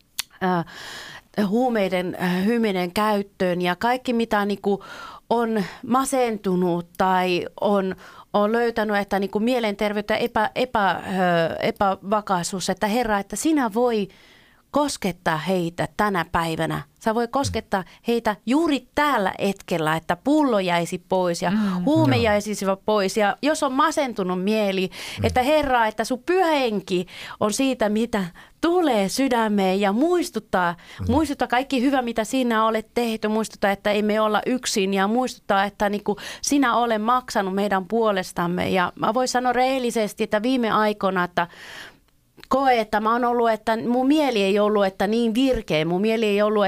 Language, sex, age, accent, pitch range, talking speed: Finnish, female, 30-49, native, 190-235 Hz, 130 wpm